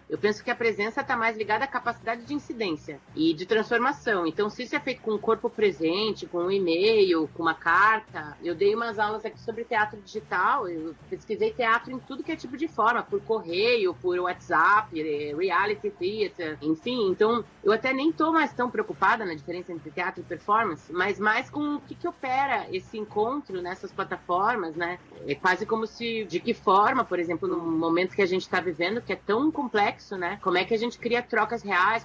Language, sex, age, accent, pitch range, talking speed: Portuguese, female, 30-49, Brazilian, 180-235 Hz, 210 wpm